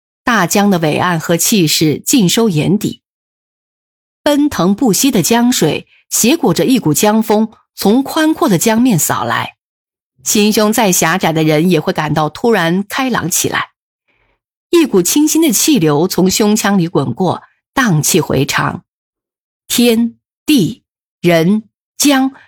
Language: Chinese